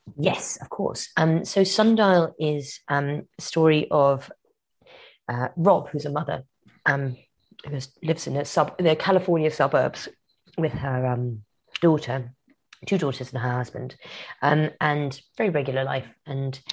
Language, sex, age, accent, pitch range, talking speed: English, female, 30-49, British, 135-165 Hz, 145 wpm